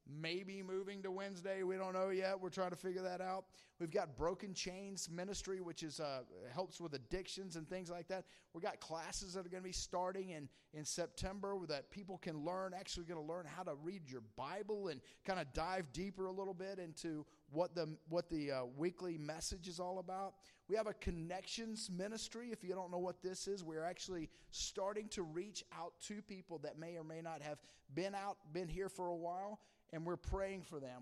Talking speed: 215 wpm